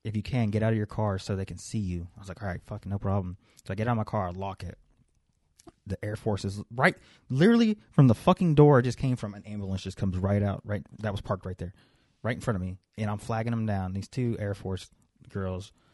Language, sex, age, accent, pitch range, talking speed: English, male, 20-39, American, 95-110 Hz, 270 wpm